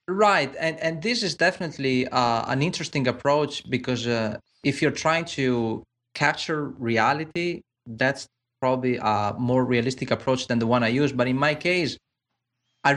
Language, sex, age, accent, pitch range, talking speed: English, male, 30-49, Spanish, 125-165 Hz, 155 wpm